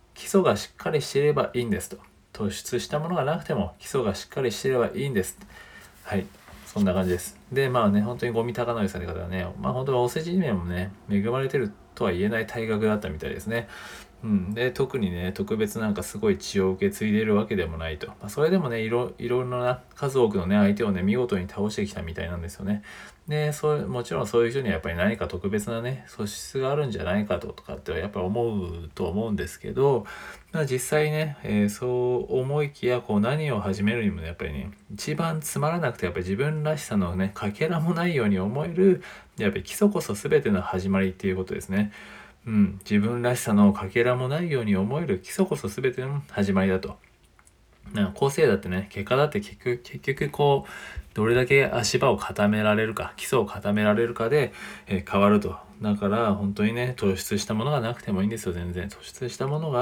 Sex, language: male, Japanese